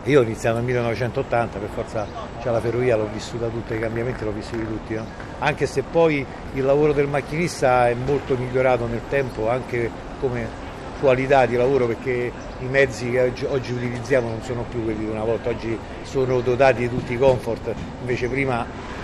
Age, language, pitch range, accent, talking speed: 60-79, Italian, 115-140 Hz, native, 185 wpm